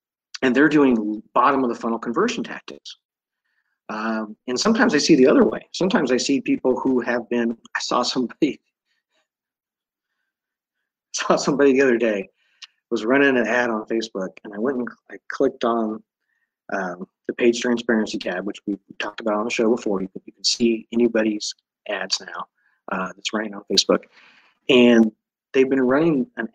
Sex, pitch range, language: male, 115-140 Hz, English